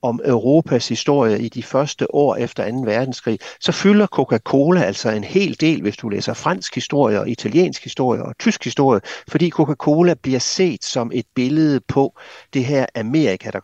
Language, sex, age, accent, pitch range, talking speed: Danish, male, 60-79, native, 120-160 Hz, 175 wpm